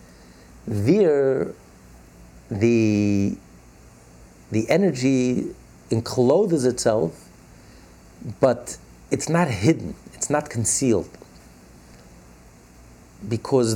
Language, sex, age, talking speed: English, male, 50-69, 60 wpm